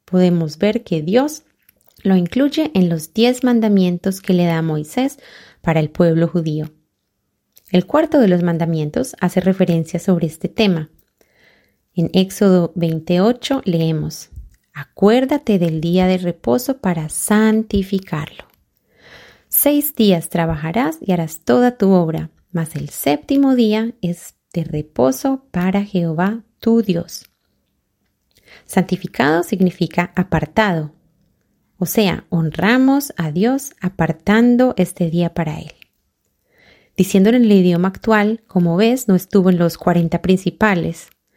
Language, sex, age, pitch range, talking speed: Spanish, female, 30-49, 170-220 Hz, 120 wpm